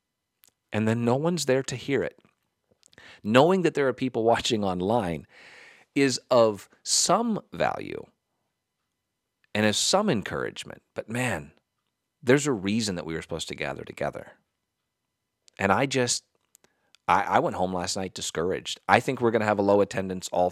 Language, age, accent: English, 40-59, American